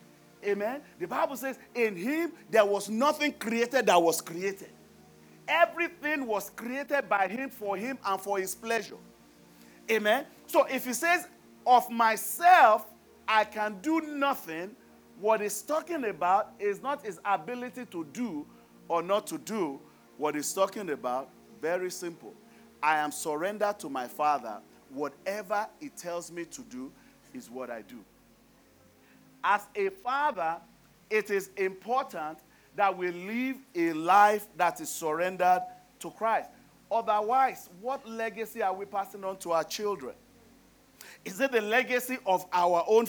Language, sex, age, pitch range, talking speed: English, male, 40-59, 165-245 Hz, 145 wpm